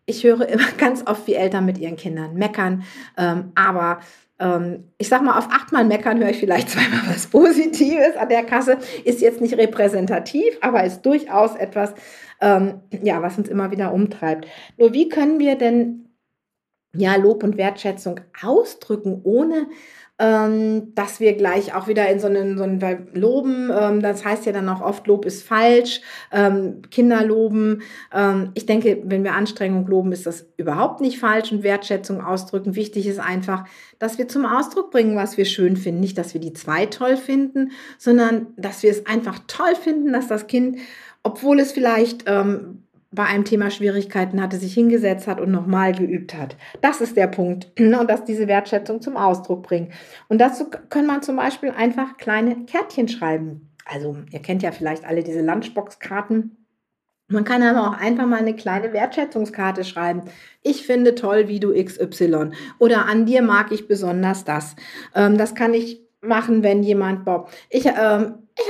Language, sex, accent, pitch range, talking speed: German, female, German, 190-240 Hz, 175 wpm